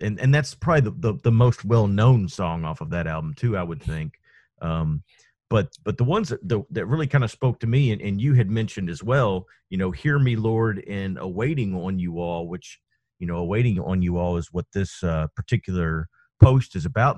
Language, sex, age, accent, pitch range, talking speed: English, male, 40-59, American, 95-130 Hz, 225 wpm